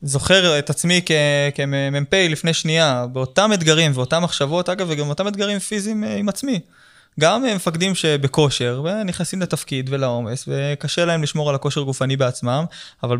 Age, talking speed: 20-39, 145 wpm